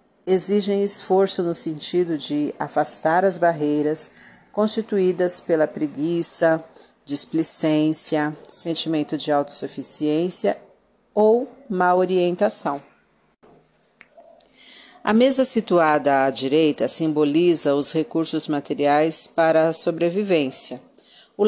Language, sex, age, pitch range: Portuguese, female, 50-69, 150-195 Hz